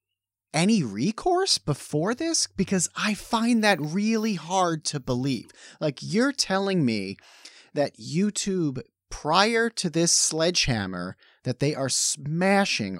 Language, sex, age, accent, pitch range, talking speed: English, male, 30-49, American, 125-200 Hz, 120 wpm